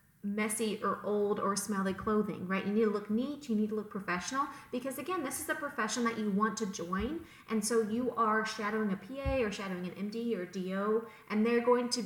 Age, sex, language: 30-49, female, English